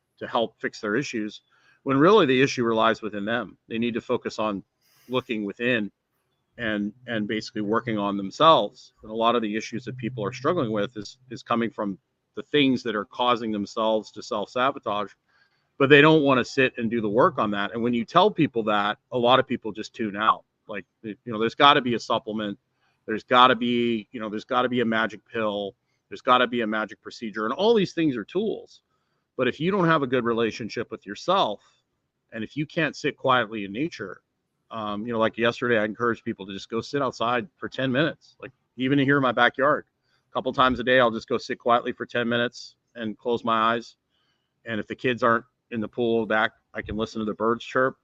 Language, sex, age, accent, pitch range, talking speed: English, male, 40-59, American, 110-130 Hz, 220 wpm